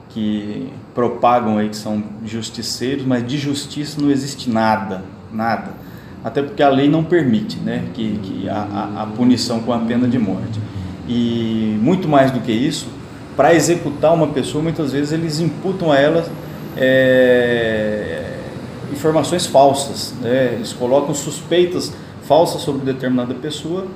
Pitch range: 110-145 Hz